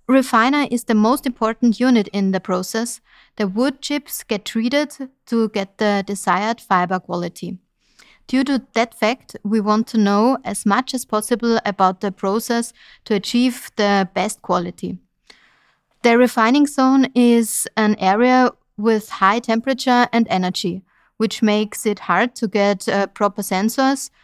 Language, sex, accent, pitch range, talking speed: English, female, German, 200-245 Hz, 150 wpm